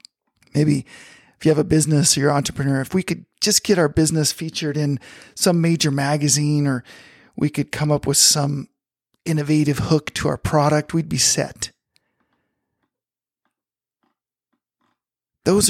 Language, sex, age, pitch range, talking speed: English, male, 40-59, 135-165 Hz, 145 wpm